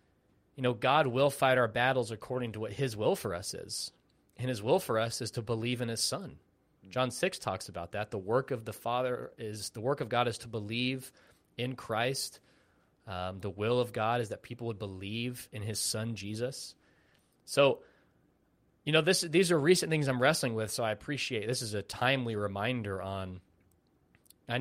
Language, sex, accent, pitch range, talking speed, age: English, male, American, 105-130 Hz, 195 wpm, 20-39